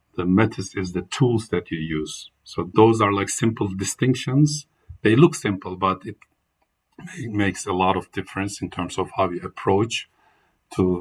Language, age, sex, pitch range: English, 50-69, male, 95-110 Hz